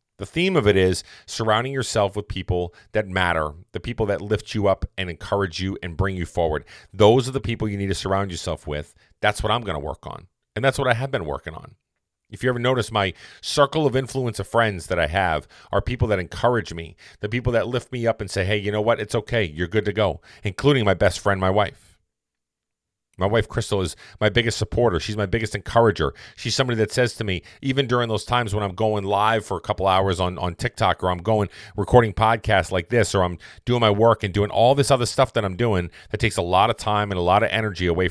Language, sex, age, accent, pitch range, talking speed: English, male, 40-59, American, 95-115 Hz, 245 wpm